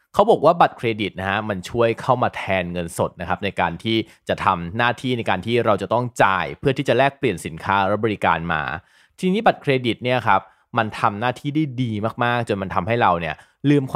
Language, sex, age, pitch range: Thai, male, 20-39, 100-140 Hz